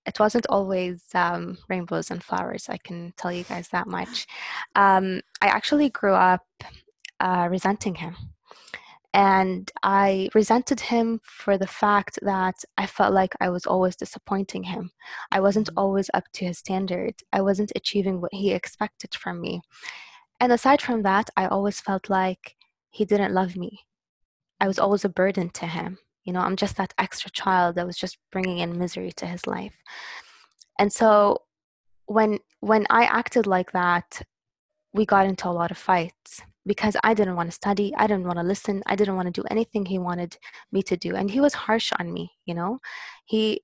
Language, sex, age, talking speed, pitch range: English, female, 20-39, 185 wpm, 180-215 Hz